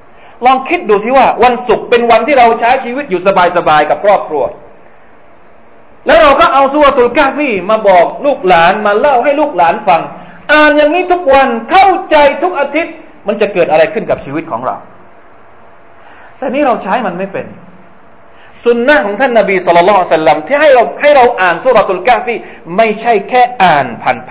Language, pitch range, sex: Thai, 175-285 Hz, male